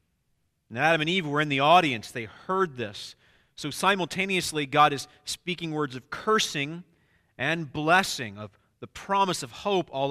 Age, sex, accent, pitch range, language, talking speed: 40-59, male, American, 120-155 Hz, English, 160 wpm